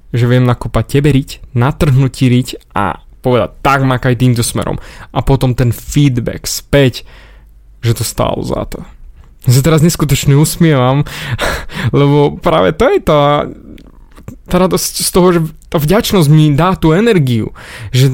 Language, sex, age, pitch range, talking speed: Slovak, male, 20-39, 125-155 Hz, 145 wpm